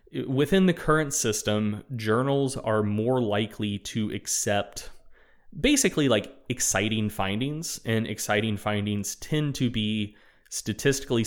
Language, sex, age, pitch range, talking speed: English, male, 20-39, 100-120 Hz, 110 wpm